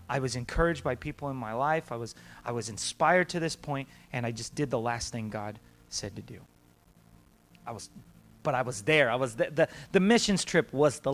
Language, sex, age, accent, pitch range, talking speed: English, male, 30-49, American, 110-170 Hz, 225 wpm